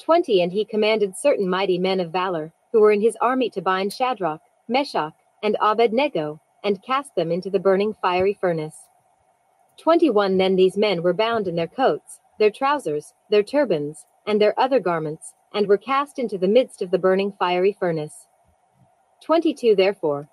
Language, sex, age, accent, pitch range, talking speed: English, female, 30-49, American, 185-270 Hz, 170 wpm